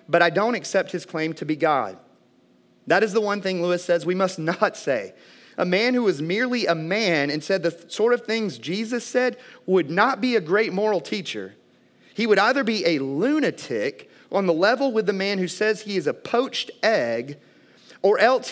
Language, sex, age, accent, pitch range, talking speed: English, male, 30-49, American, 150-215 Hz, 205 wpm